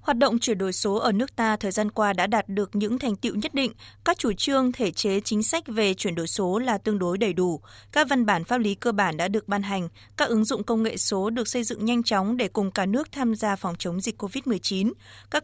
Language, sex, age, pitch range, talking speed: Vietnamese, female, 20-39, 195-235 Hz, 265 wpm